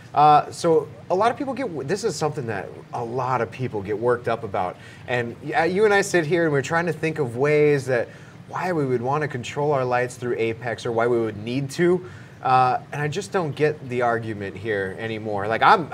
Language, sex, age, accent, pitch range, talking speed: English, male, 30-49, American, 120-155 Hz, 235 wpm